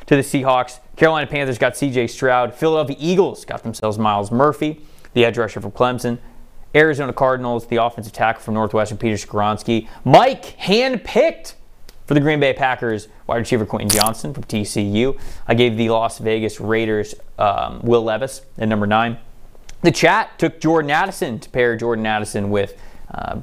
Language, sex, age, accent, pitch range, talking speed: English, male, 20-39, American, 105-130 Hz, 165 wpm